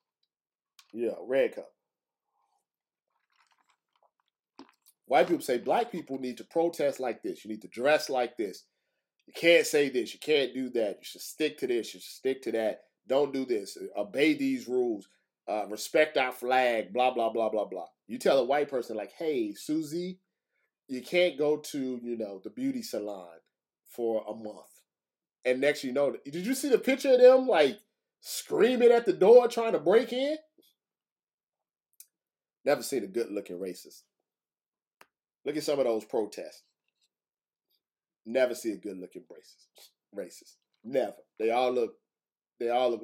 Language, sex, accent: English, male, American